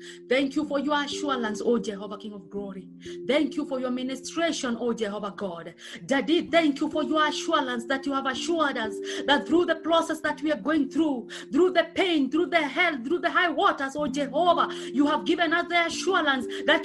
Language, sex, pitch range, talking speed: English, female, 285-360 Hz, 205 wpm